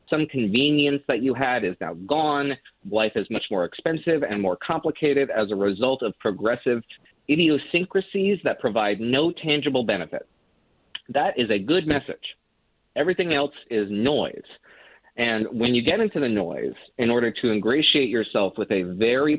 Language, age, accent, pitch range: English, 30-49, American, 110-150 Hz